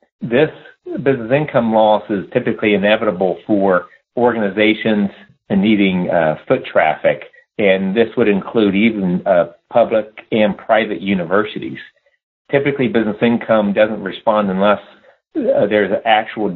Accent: American